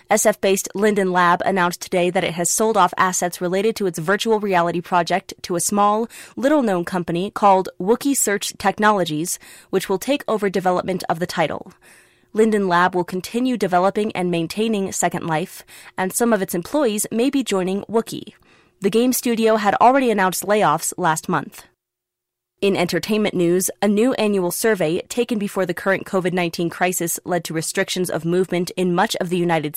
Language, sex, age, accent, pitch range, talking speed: English, female, 20-39, American, 180-220 Hz, 170 wpm